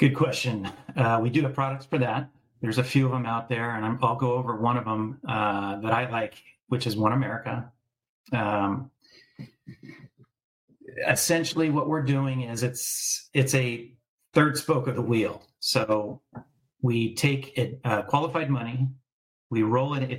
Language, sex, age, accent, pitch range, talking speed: English, male, 50-69, American, 115-135 Hz, 165 wpm